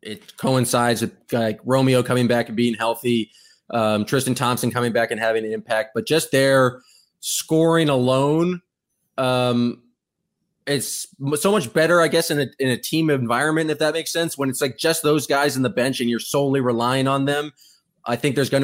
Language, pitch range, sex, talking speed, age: English, 120-145 Hz, male, 195 wpm, 20-39